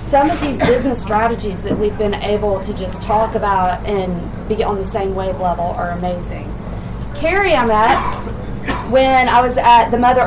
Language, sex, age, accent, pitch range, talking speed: English, female, 30-49, American, 210-265 Hz, 180 wpm